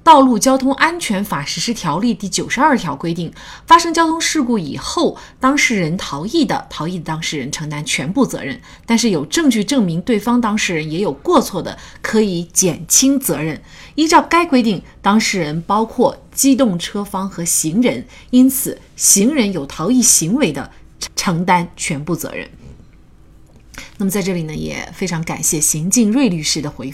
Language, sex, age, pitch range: Chinese, female, 30-49, 165-230 Hz